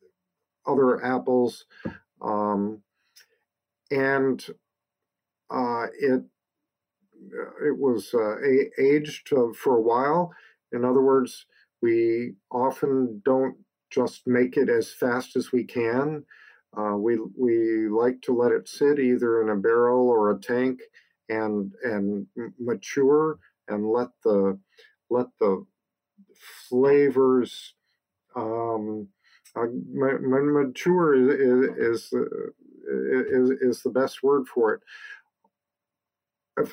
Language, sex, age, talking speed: English, male, 50-69, 110 wpm